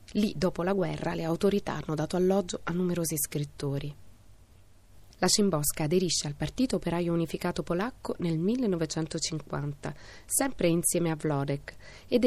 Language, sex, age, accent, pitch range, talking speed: Italian, female, 30-49, native, 145-190 Hz, 130 wpm